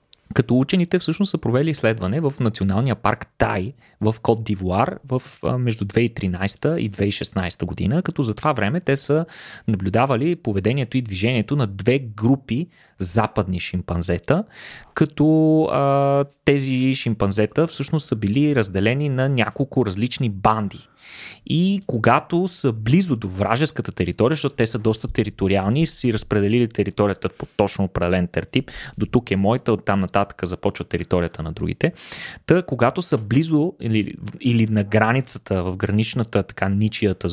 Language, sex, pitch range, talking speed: Bulgarian, male, 100-140 Hz, 140 wpm